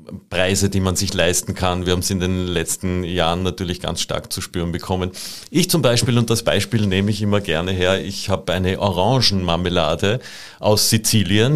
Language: German